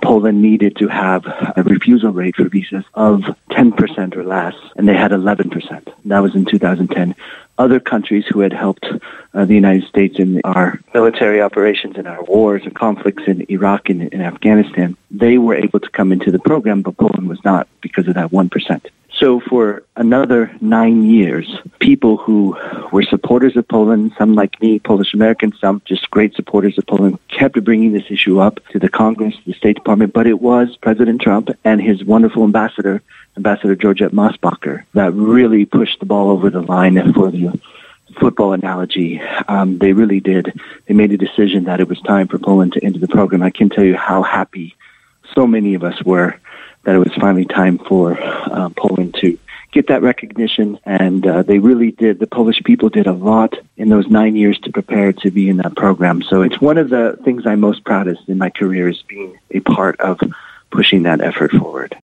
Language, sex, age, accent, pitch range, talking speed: Polish, male, 50-69, American, 95-110 Hz, 195 wpm